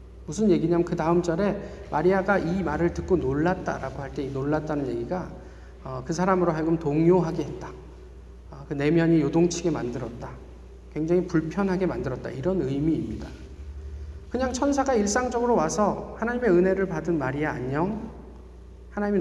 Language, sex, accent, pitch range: Korean, male, native, 155-205 Hz